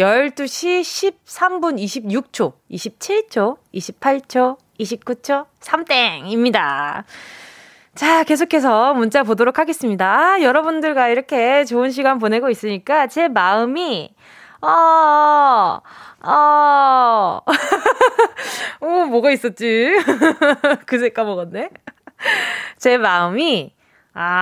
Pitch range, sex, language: 215-305 Hz, female, Korean